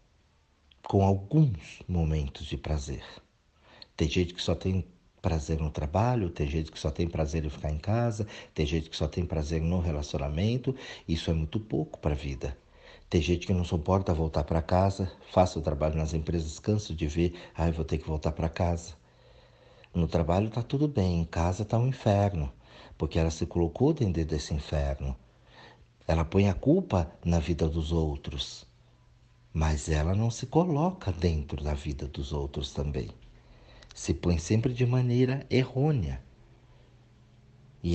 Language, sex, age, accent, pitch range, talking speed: Portuguese, male, 60-79, Brazilian, 80-110 Hz, 165 wpm